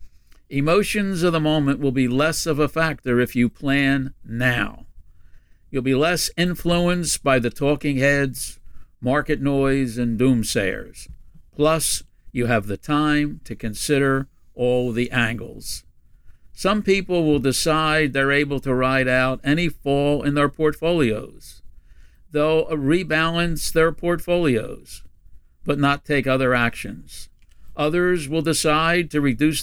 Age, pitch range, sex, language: 60-79, 125-155 Hz, male, English